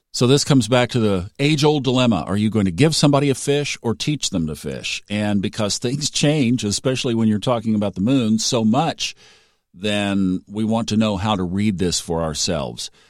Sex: male